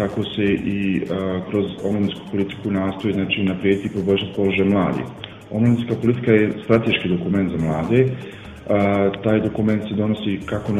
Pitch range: 100-110 Hz